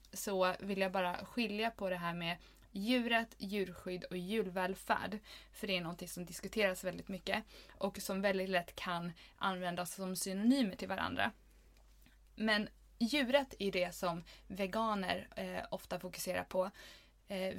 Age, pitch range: 20-39, 180-205 Hz